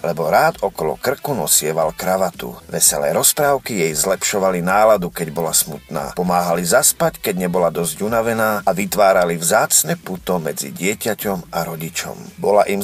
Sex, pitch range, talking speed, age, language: male, 95-145 Hz, 140 wpm, 40-59, Slovak